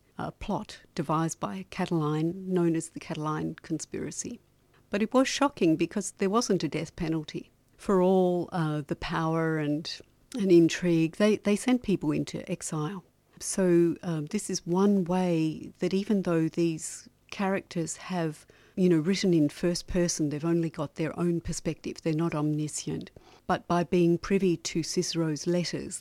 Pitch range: 155-175 Hz